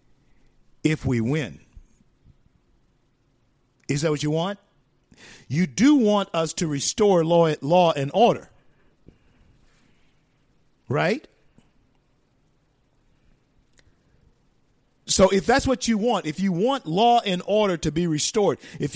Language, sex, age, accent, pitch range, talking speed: English, male, 50-69, American, 115-180 Hz, 110 wpm